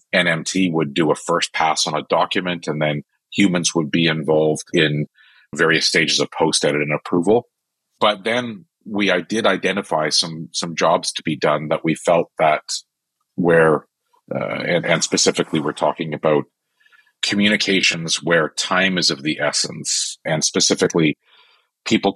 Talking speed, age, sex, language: 150 wpm, 40-59, male, English